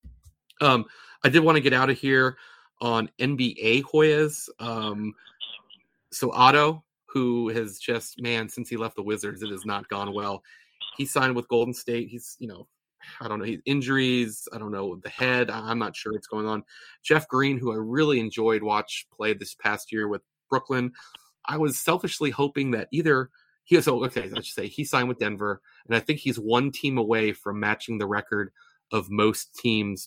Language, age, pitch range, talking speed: English, 30-49, 105-130 Hz, 190 wpm